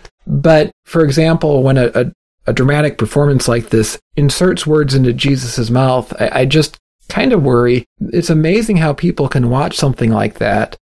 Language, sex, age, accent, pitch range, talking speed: English, male, 40-59, American, 120-160 Hz, 170 wpm